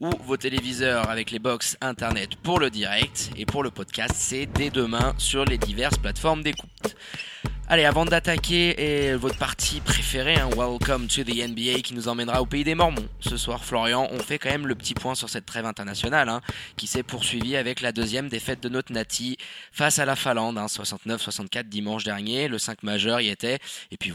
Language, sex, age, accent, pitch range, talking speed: French, male, 20-39, French, 110-135 Hz, 205 wpm